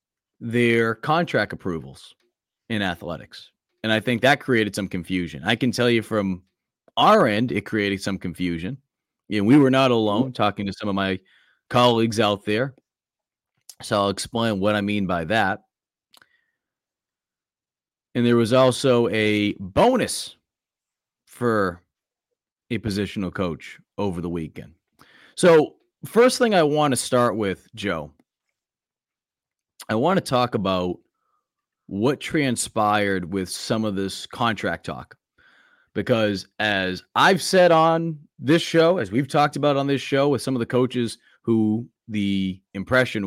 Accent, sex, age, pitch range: American, male, 30-49, 100-130 Hz